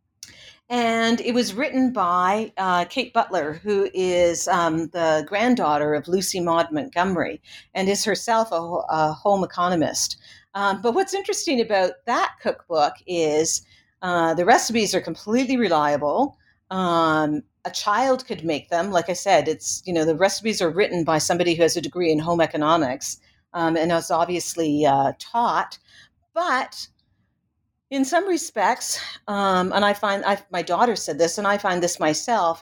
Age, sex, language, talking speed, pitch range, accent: 50-69, female, English, 160 wpm, 165-225 Hz, American